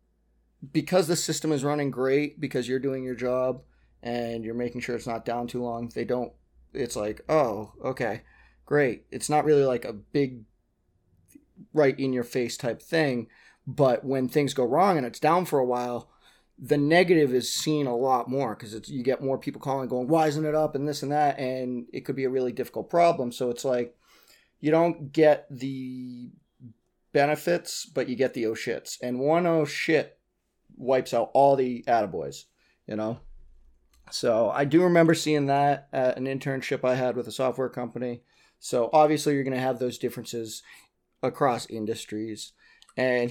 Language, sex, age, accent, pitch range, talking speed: English, male, 30-49, American, 120-145 Hz, 185 wpm